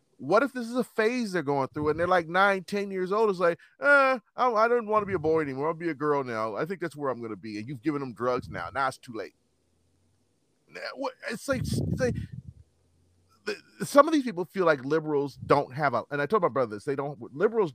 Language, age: English, 30-49